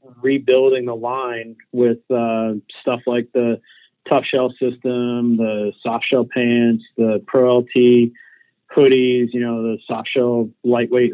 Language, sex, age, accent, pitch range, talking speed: English, male, 30-49, American, 115-130 Hz, 135 wpm